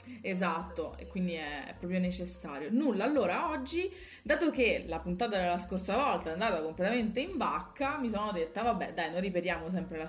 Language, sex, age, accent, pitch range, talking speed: Italian, female, 30-49, native, 165-235 Hz, 180 wpm